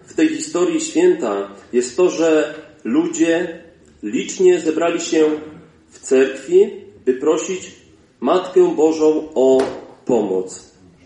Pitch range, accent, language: 135-220 Hz, native, Polish